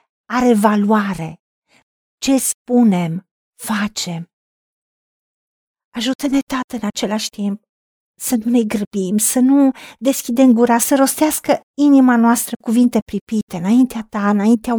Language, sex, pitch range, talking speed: Romanian, female, 220-275 Hz, 110 wpm